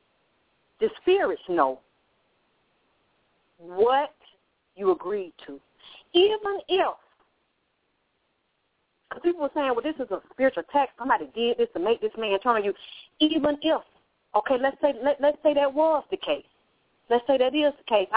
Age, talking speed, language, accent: 40-59, 155 wpm, English, American